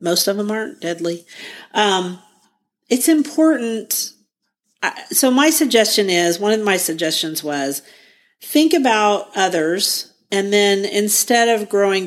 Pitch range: 165-210 Hz